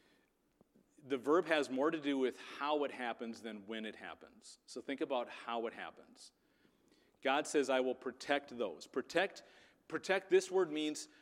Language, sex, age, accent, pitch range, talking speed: English, male, 40-59, American, 115-170 Hz, 165 wpm